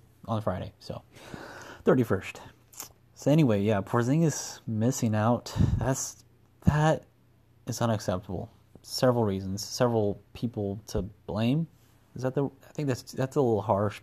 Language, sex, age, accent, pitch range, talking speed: English, male, 30-49, American, 105-125 Hz, 130 wpm